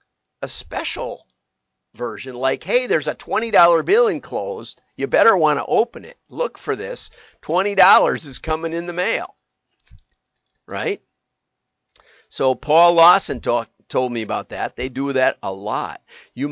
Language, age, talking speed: English, 50-69, 155 wpm